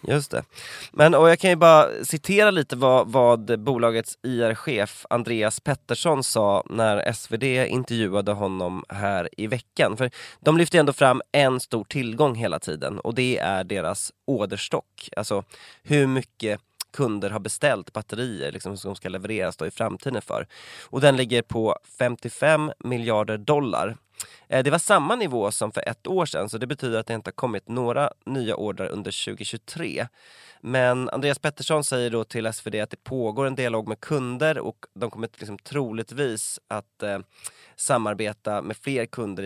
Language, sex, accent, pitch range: Swedish, male, native, 105-135 Hz